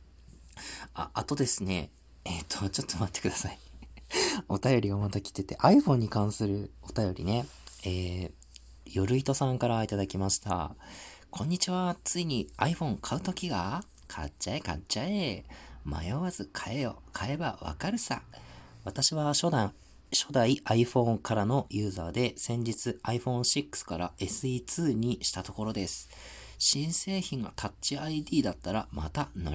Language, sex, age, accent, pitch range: Japanese, male, 40-59, native, 85-120 Hz